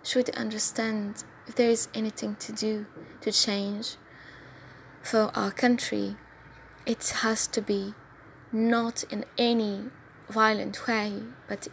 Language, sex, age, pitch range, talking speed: English, female, 20-39, 205-240 Hz, 120 wpm